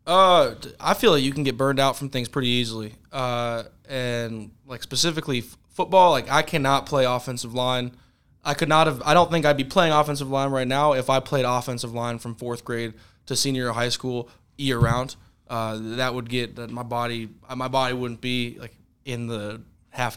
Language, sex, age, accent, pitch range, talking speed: English, male, 20-39, American, 115-130 Hz, 200 wpm